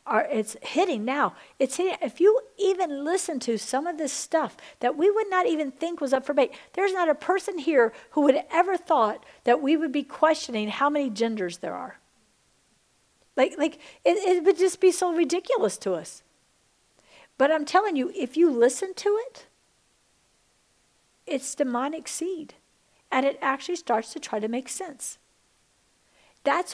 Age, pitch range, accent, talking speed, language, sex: 50-69, 265-345 Hz, American, 175 wpm, English, female